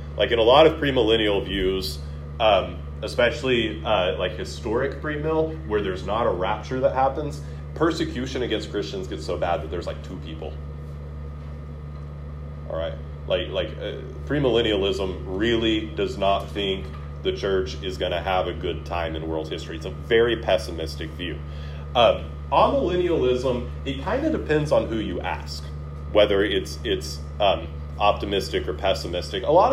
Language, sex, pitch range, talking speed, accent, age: English, male, 75-115 Hz, 155 wpm, American, 30-49